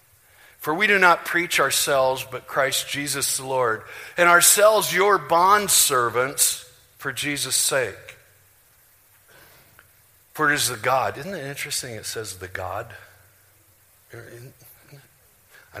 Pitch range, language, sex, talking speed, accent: 100-140 Hz, English, male, 120 wpm, American